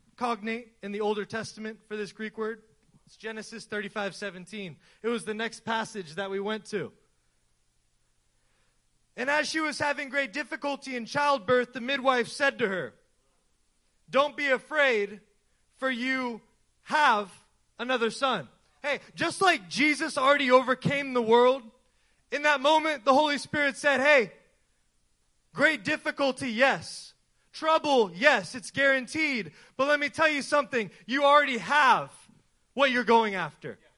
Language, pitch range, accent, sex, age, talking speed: English, 220-295 Hz, American, male, 20-39, 145 wpm